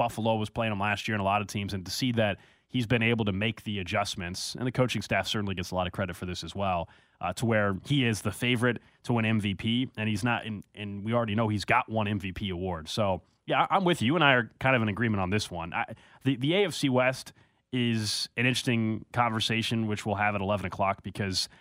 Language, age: English, 20-39